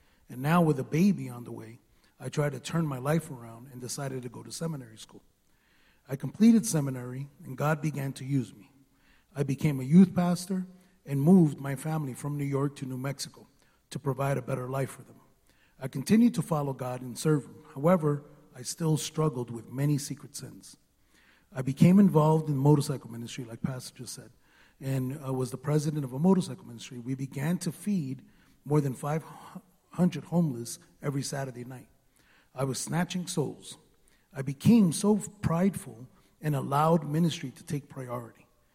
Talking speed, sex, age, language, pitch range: 175 wpm, male, 30-49, English, 130-155 Hz